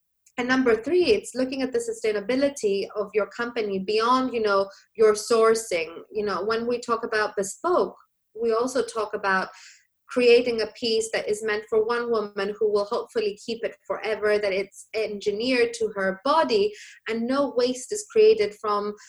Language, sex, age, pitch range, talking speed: English, female, 20-39, 205-255 Hz, 170 wpm